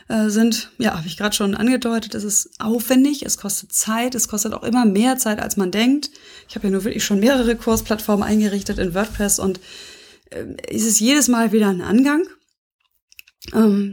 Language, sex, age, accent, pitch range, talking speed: German, female, 20-39, German, 200-235 Hz, 185 wpm